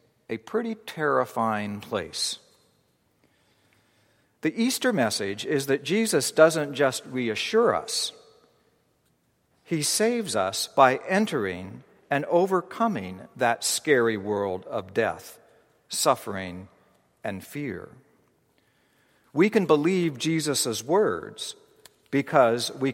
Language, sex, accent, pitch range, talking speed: English, male, American, 120-180 Hz, 95 wpm